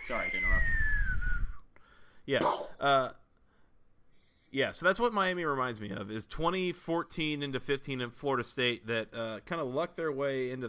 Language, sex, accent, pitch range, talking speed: English, male, American, 110-150 Hz, 155 wpm